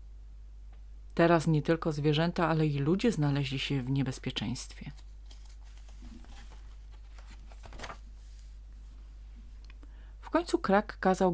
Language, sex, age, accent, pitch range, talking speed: Polish, female, 30-49, native, 125-190 Hz, 80 wpm